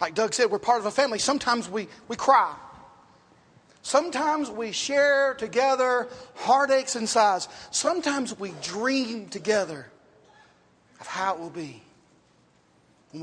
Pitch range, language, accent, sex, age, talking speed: 200-245 Hz, English, American, male, 40-59, 130 wpm